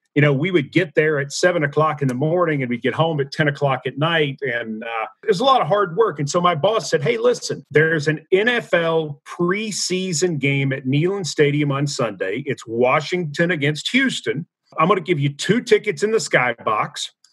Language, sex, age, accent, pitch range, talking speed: English, male, 40-59, American, 145-195 Hz, 210 wpm